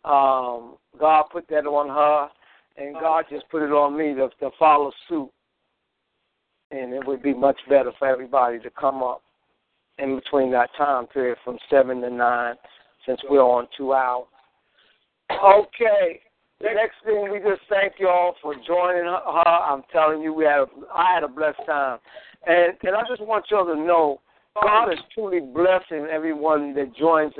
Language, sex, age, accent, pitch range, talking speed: English, male, 60-79, American, 145-190 Hz, 170 wpm